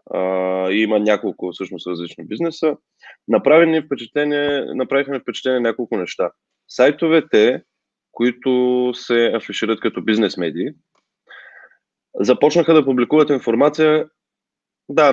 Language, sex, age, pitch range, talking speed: Bulgarian, male, 20-39, 110-145 Hz, 95 wpm